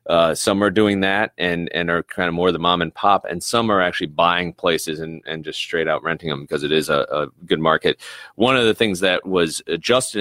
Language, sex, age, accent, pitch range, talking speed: English, male, 30-49, American, 80-95 Hz, 245 wpm